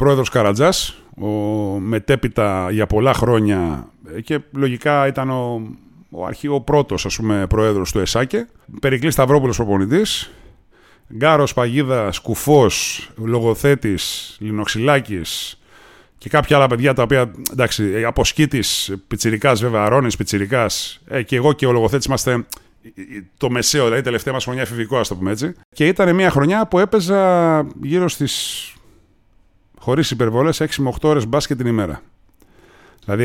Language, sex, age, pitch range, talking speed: Greek, male, 30-49, 105-145 Hz, 130 wpm